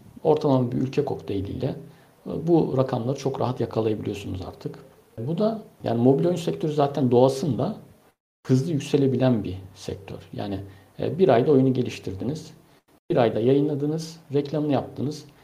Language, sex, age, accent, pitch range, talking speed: Turkish, male, 60-79, native, 105-145 Hz, 125 wpm